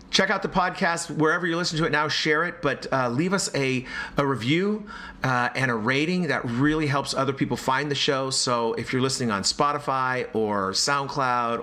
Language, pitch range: English, 125-160 Hz